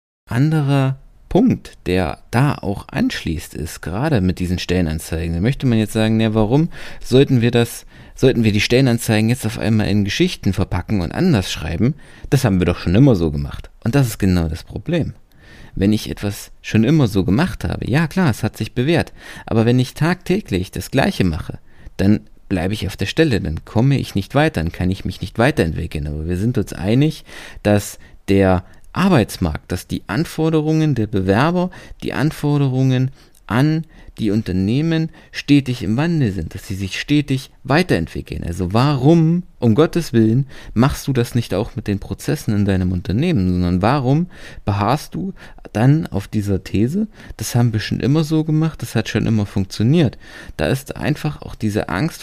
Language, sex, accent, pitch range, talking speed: German, male, German, 95-145 Hz, 175 wpm